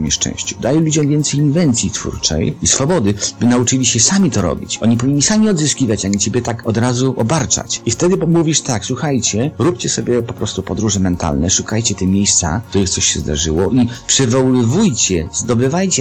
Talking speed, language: 170 wpm, Polish